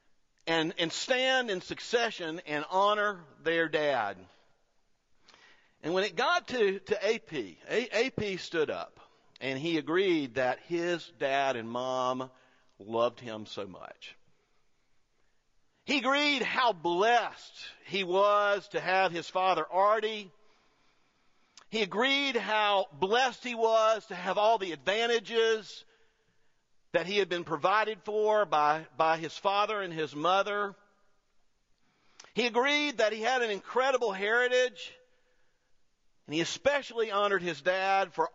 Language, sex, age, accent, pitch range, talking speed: English, male, 50-69, American, 160-220 Hz, 125 wpm